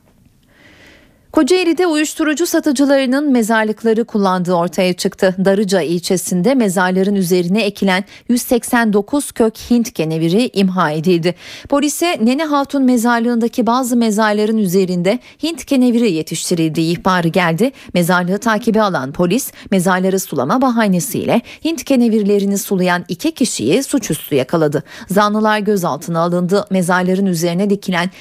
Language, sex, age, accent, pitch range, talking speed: Turkish, female, 40-59, native, 185-250 Hz, 105 wpm